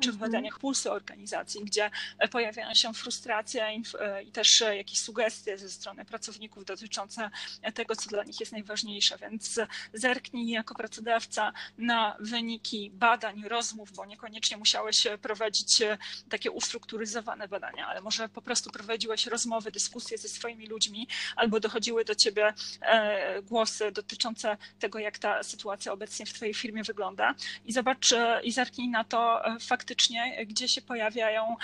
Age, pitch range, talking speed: 20-39, 215-235 Hz, 140 wpm